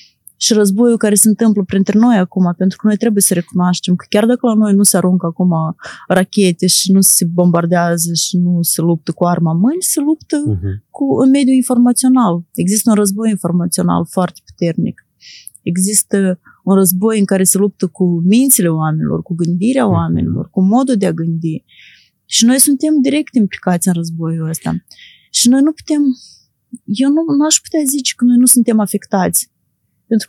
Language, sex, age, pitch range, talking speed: Romanian, female, 30-49, 180-235 Hz, 175 wpm